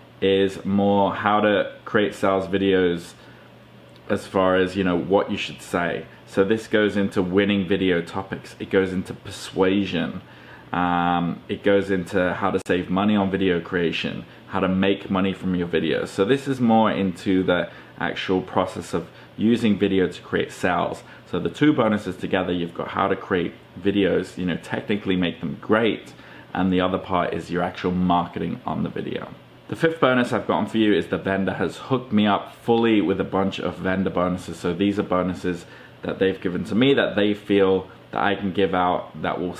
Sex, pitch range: male, 90-105 Hz